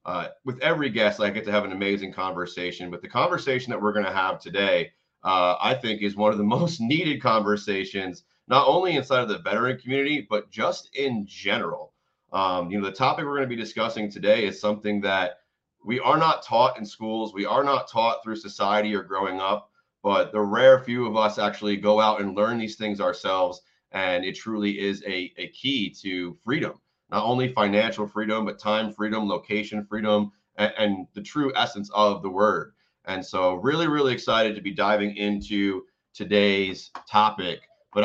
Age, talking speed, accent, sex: 30-49, 190 wpm, American, male